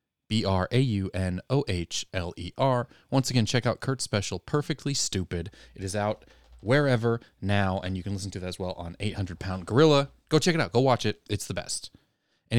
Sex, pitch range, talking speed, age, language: male, 95-120 Hz, 170 wpm, 30-49, English